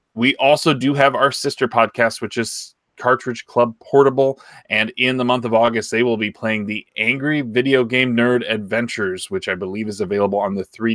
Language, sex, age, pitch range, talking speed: English, male, 20-39, 105-125 Hz, 190 wpm